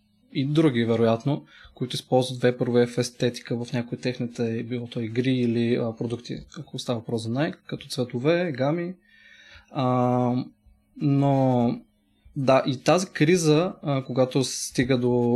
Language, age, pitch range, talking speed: Bulgarian, 20-39, 120-155 Hz, 135 wpm